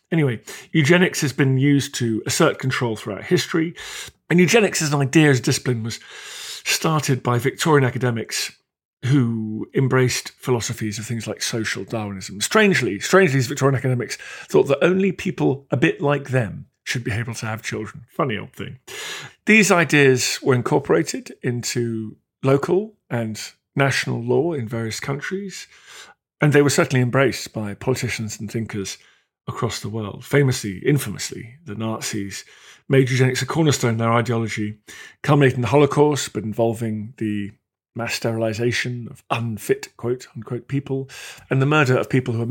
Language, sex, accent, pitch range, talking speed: English, male, British, 110-140 Hz, 150 wpm